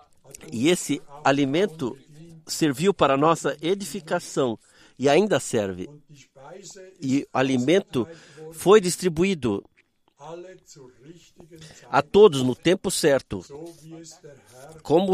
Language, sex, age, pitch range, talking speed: Portuguese, male, 50-69, 140-175 Hz, 85 wpm